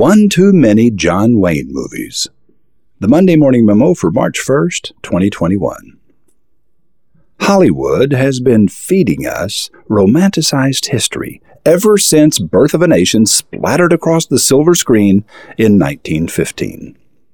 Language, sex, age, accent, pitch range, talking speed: English, male, 50-69, American, 110-185 Hz, 120 wpm